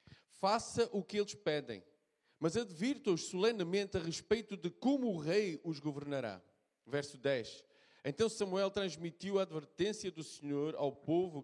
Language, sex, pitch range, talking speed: Portuguese, male, 150-200 Hz, 145 wpm